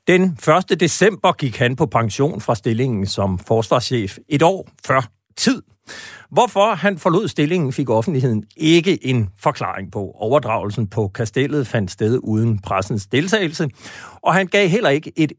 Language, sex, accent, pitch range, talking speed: Danish, male, native, 115-175 Hz, 150 wpm